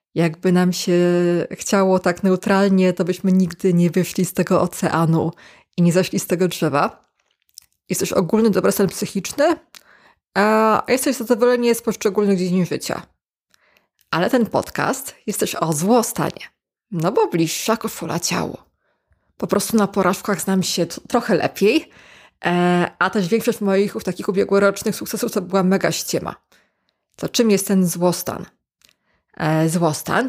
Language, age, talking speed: Polish, 20-39, 135 wpm